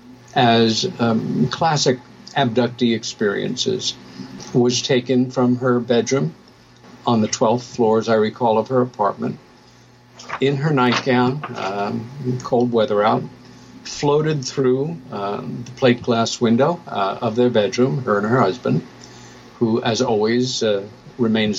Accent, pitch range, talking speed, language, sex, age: American, 120-130 Hz, 130 wpm, English, male, 60-79